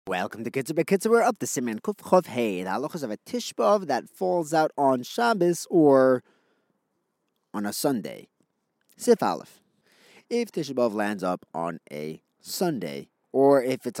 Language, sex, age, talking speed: English, male, 30-49, 165 wpm